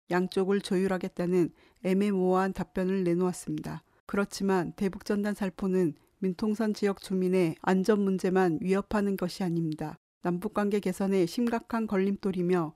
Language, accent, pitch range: Korean, native, 180-210 Hz